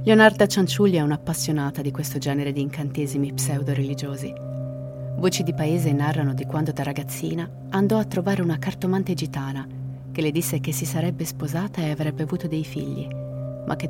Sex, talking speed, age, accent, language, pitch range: female, 165 wpm, 30-49, native, Italian, 135-165 Hz